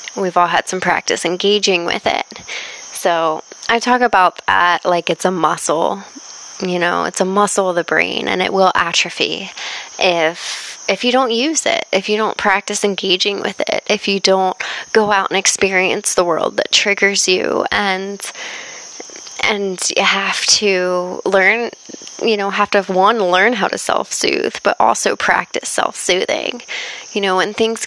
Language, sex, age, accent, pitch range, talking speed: English, female, 20-39, American, 180-225 Hz, 165 wpm